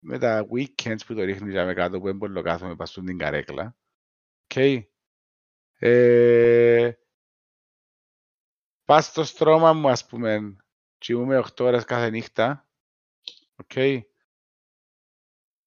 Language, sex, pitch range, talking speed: Greek, male, 110-145 Hz, 120 wpm